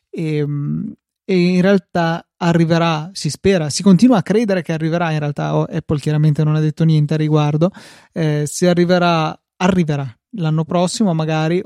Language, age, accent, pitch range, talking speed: Italian, 20-39, native, 155-170 Hz, 155 wpm